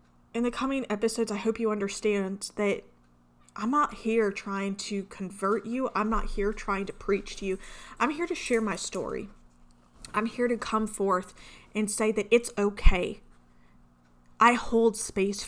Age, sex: 20-39, female